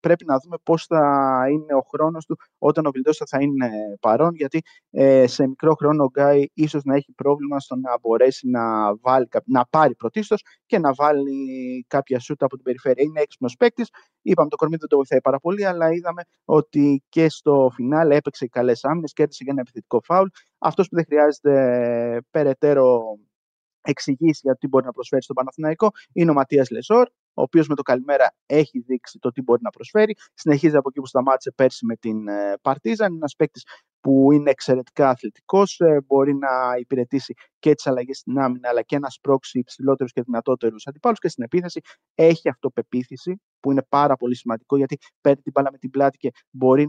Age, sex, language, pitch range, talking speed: 30-49, male, Greek, 130-155 Hz, 185 wpm